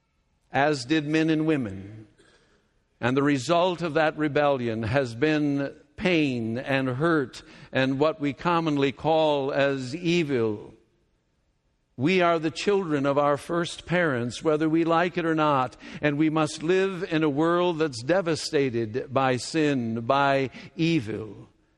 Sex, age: male, 60-79